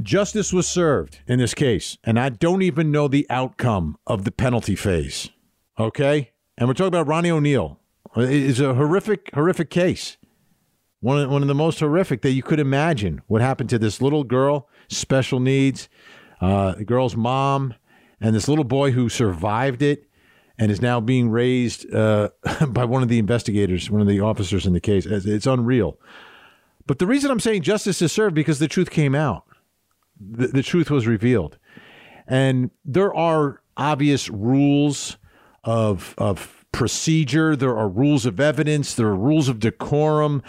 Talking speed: 170 wpm